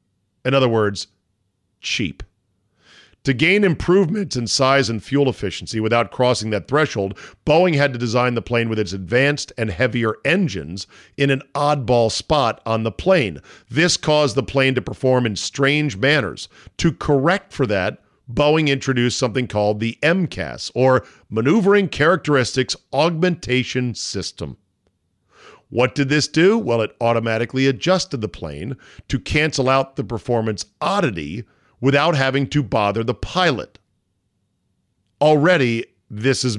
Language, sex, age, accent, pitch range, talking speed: English, male, 50-69, American, 110-145 Hz, 140 wpm